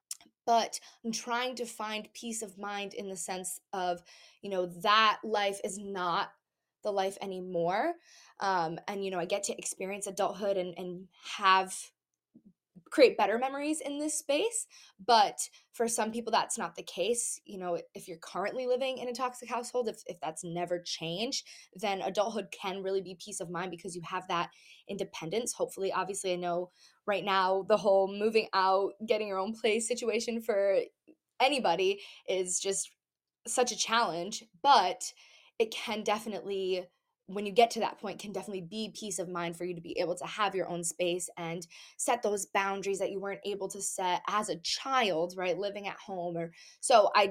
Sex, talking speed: female, 180 wpm